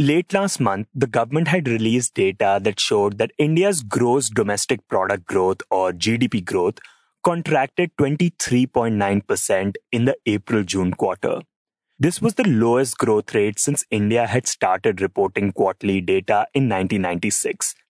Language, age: English, 30-49